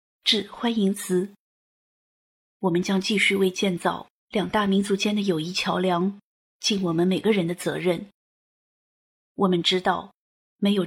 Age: 20-39